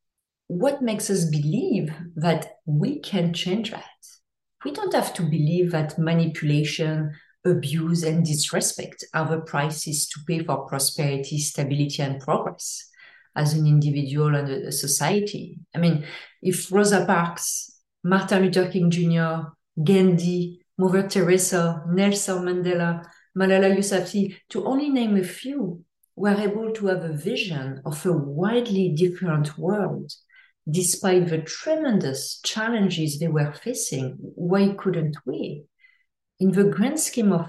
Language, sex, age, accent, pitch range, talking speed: English, female, 40-59, French, 160-195 Hz, 130 wpm